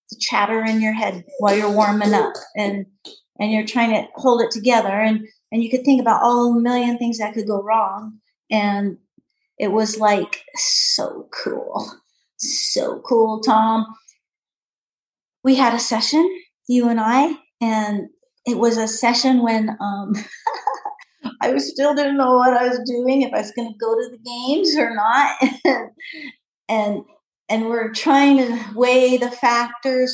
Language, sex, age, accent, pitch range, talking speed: English, female, 40-59, American, 215-255 Hz, 160 wpm